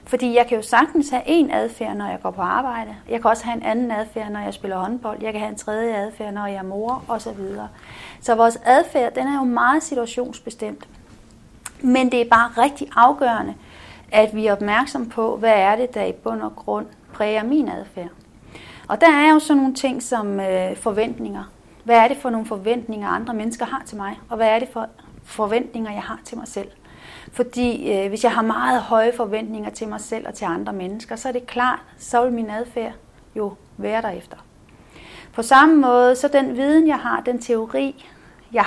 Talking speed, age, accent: 205 wpm, 30-49, native